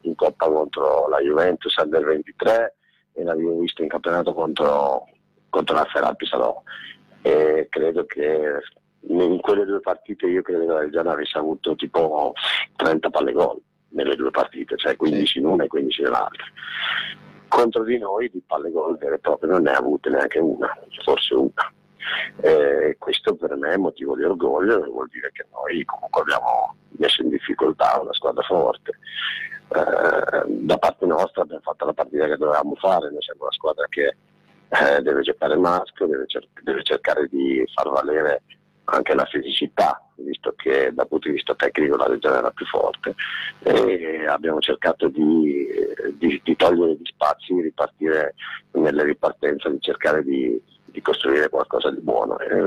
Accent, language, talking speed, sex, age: Italian, Spanish, 165 wpm, male, 50-69